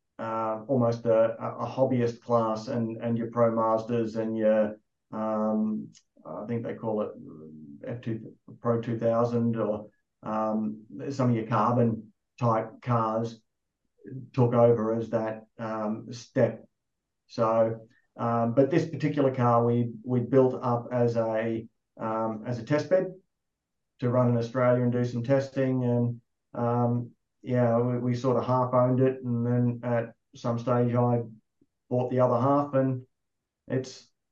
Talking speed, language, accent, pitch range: 145 wpm, English, Australian, 115-125 Hz